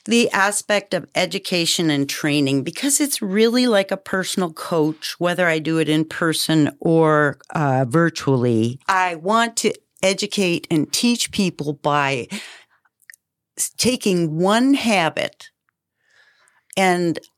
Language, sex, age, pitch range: English, female, 40-59, 150-210 Hz